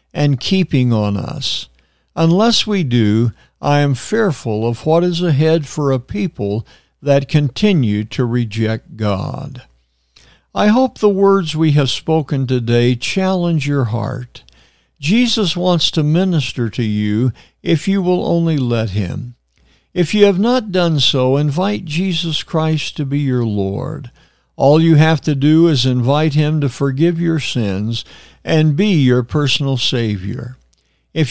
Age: 60-79